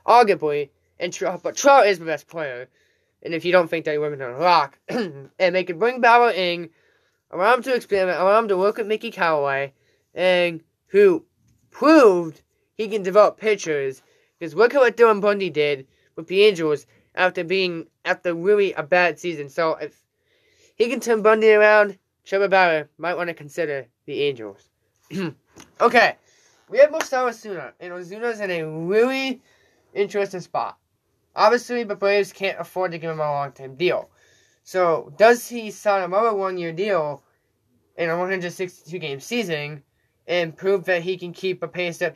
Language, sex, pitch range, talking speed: English, male, 165-220 Hz, 170 wpm